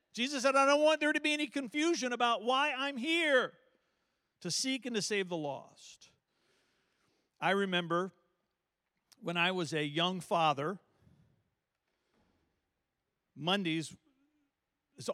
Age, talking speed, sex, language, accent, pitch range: 50-69, 125 wpm, male, English, American, 150-215 Hz